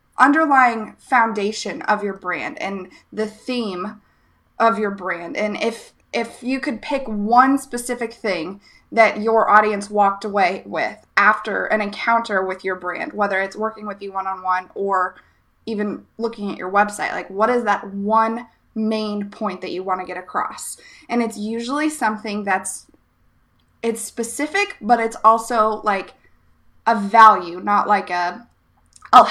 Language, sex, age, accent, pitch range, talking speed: English, female, 20-39, American, 200-230 Hz, 150 wpm